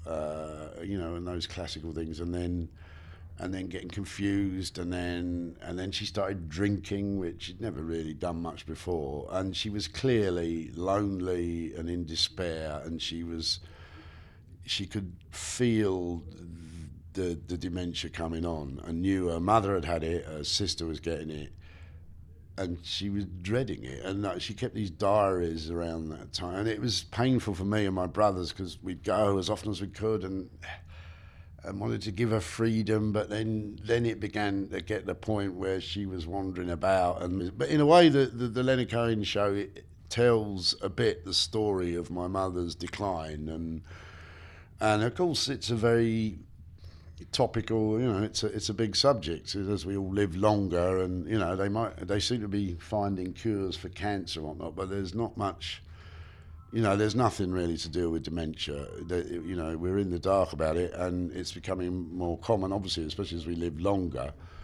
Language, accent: English, British